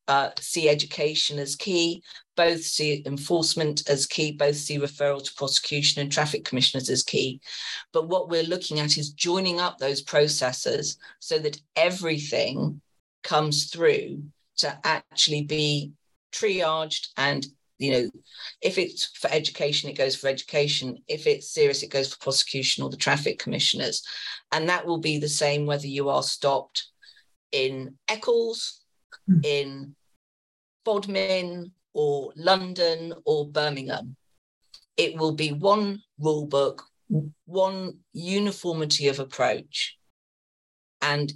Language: English